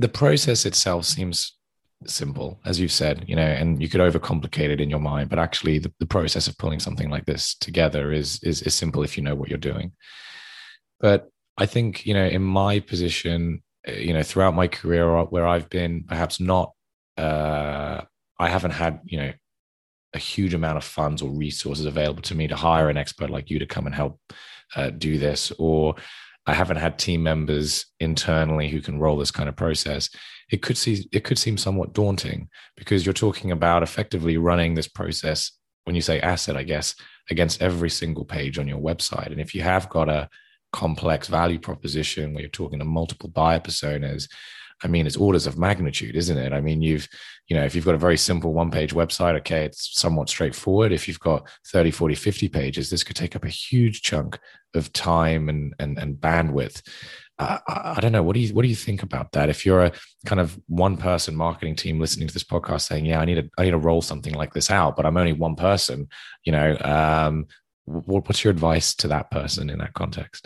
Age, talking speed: 20-39, 210 wpm